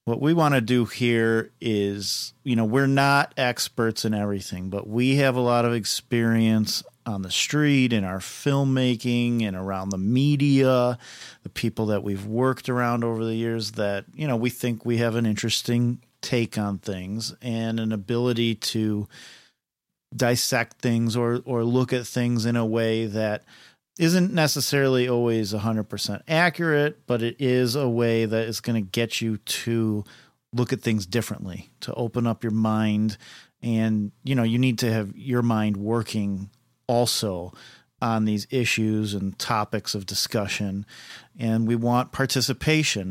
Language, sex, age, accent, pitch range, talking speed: English, male, 40-59, American, 110-125 Hz, 165 wpm